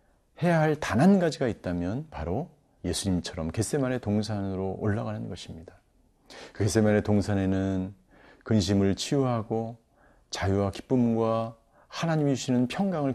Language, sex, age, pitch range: Korean, male, 40-59, 90-130 Hz